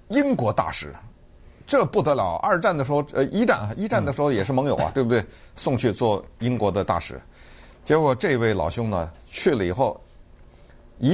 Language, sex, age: Chinese, male, 50-69